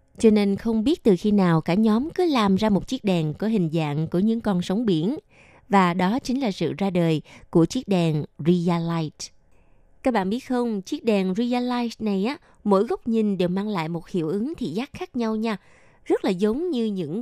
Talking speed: 225 wpm